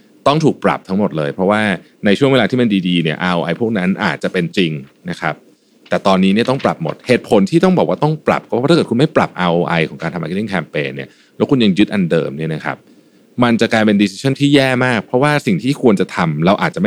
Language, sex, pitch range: Thai, male, 85-130 Hz